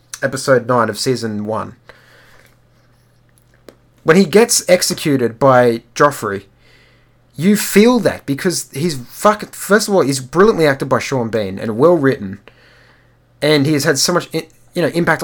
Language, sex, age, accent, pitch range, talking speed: English, male, 30-49, Australian, 120-175 Hz, 150 wpm